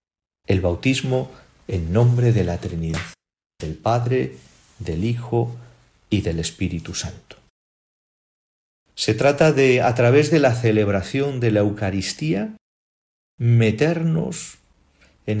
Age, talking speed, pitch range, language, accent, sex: 50-69, 110 wpm, 90-120 Hz, Spanish, Spanish, male